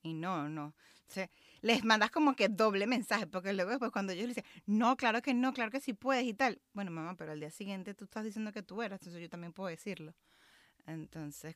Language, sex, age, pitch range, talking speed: Spanish, female, 30-49, 175-225 Hz, 240 wpm